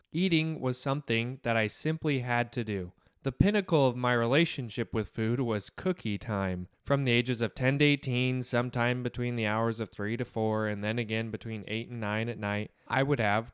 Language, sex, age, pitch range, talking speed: English, male, 20-39, 110-140 Hz, 205 wpm